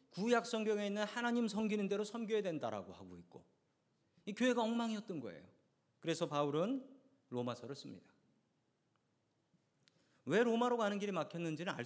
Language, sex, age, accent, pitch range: Korean, male, 40-59, native, 140-215 Hz